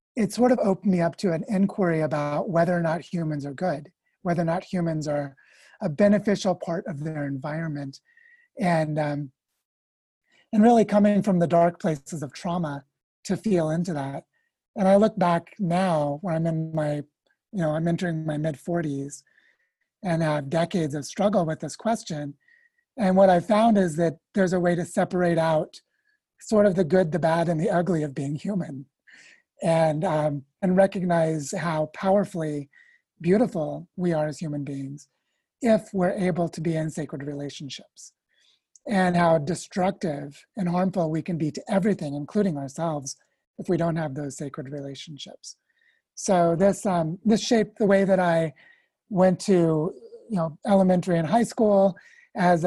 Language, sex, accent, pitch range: English, male, American, 155-195 Hz